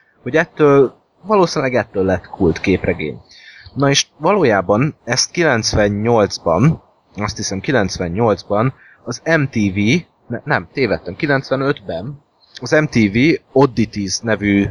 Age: 20-39